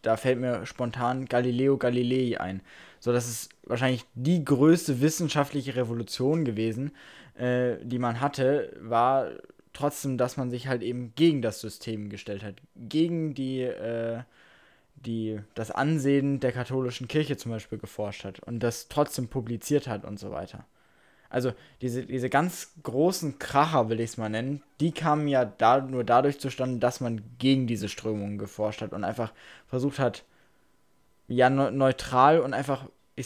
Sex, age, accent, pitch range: male, 20-39, German, 120-150 Hz